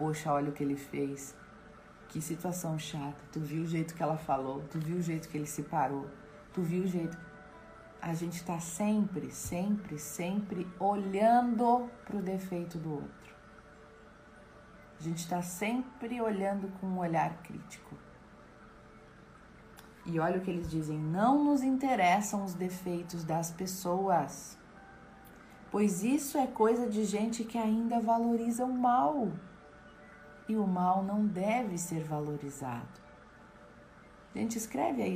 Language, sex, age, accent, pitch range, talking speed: Portuguese, female, 40-59, Brazilian, 155-210 Hz, 140 wpm